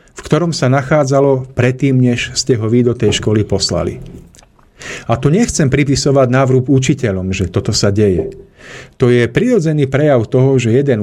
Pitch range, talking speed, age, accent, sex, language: 115-135 Hz, 165 wpm, 40-59, native, male, Czech